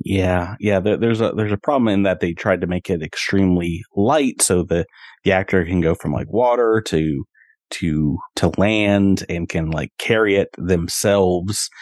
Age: 30-49